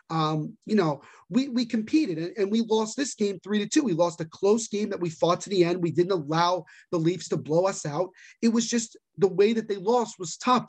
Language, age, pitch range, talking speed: English, 30-49, 160-200 Hz, 255 wpm